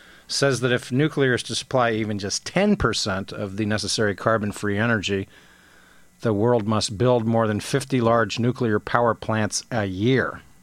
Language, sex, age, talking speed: English, male, 50-69, 160 wpm